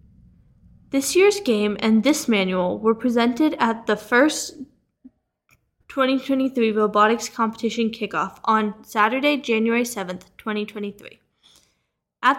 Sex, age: female, 10-29